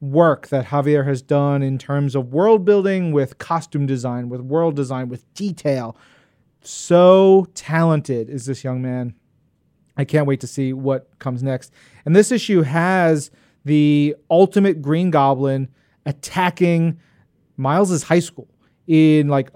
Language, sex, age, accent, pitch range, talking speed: English, male, 30-49, American, 135-165 Hz, 140 wpm